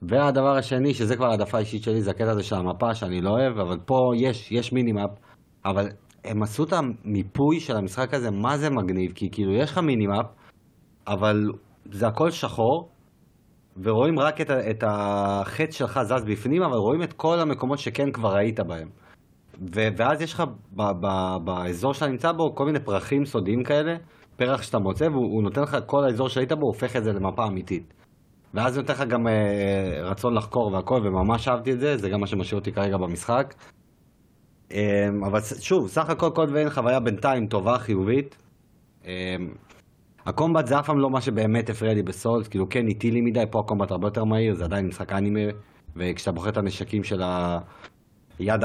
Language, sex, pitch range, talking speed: Hebrew, male, 100-130 Hz, 185 wpm